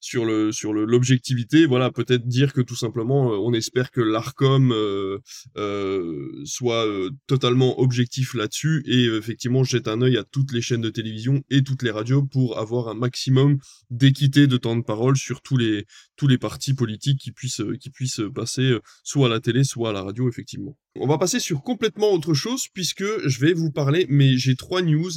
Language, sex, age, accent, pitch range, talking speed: French, male, 20-39, French, 120-150 Hz, 195 wpm